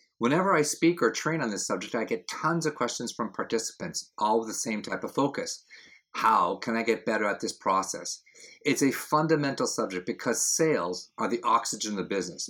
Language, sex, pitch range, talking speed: English, male, 110-155 Hz, 200 wpm